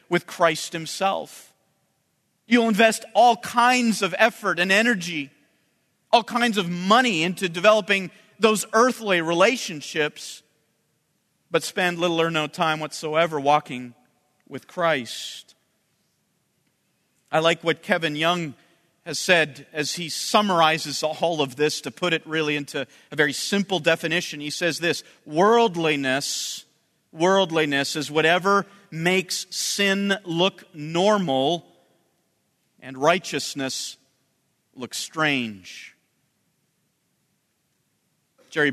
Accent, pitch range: American, 145-190 Hz